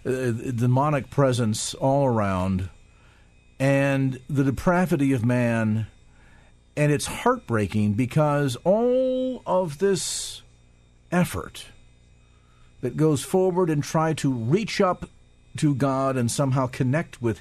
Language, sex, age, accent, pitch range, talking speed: English, male, 50-69, American, 95-145 Hz, 105 wpm